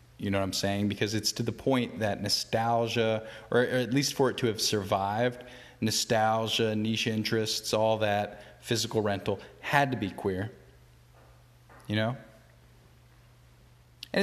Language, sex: English, male